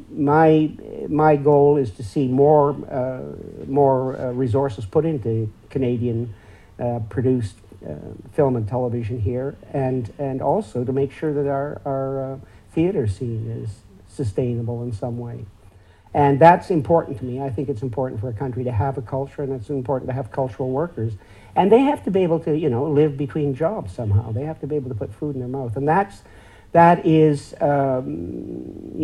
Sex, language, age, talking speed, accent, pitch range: male, English, 50-69, 185 wpm, American, 115-145 Hz